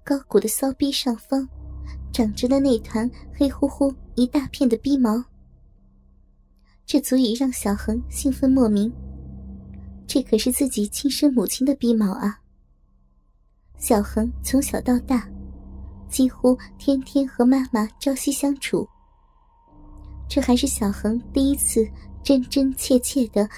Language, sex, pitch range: Chinese, male, 195-265 Hz